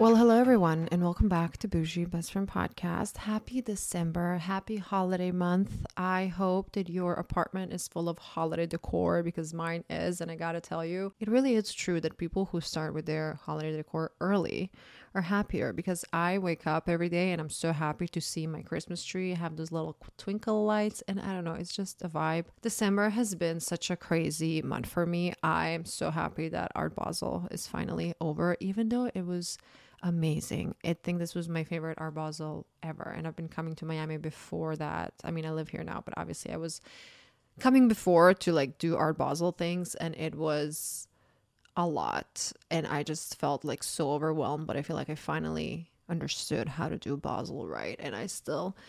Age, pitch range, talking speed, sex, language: 20-39, 160-185 Hz, 200 wpm, female, English